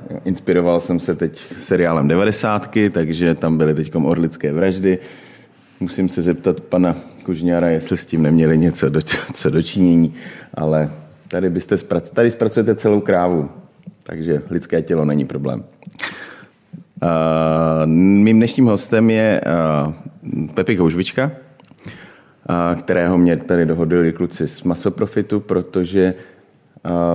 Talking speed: 115 wpm